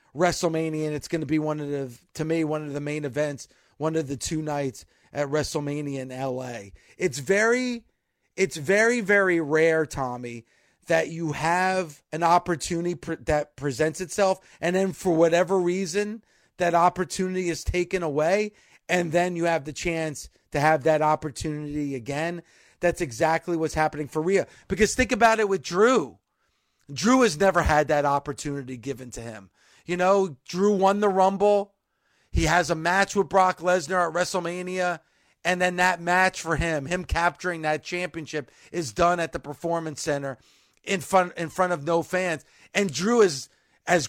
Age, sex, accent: 30-49, male, American